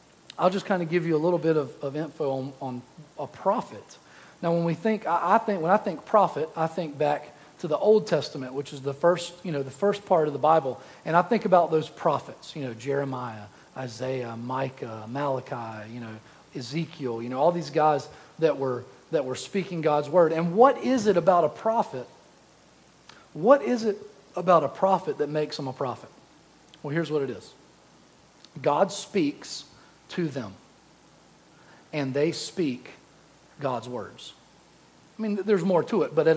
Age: 40-59